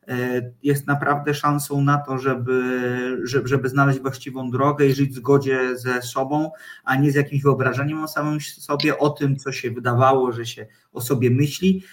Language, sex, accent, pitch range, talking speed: Polish, male, native, 125-145 Hz, 170 wpm